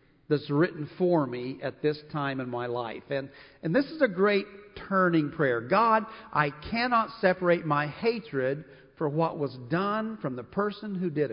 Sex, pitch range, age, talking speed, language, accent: male, 135-195 Hz, 50-69, 175 wpm, English, American